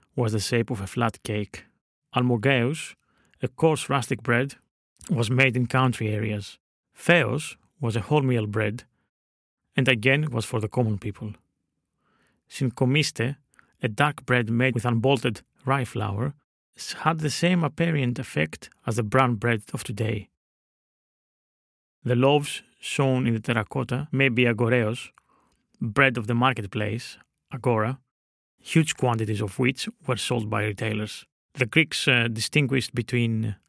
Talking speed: 135 wpm